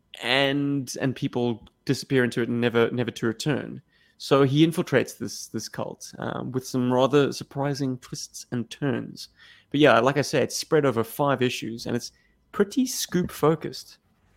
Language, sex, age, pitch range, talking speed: English, male, 20-39, 110-135 Hz, 165 wpm